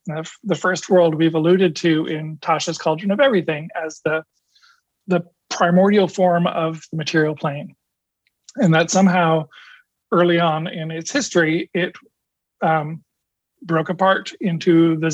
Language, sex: English, male